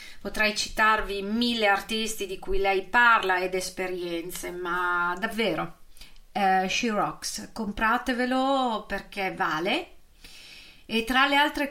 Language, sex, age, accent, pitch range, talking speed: Italian, female, 30-49, native, 195-260 Hz, 115 wpm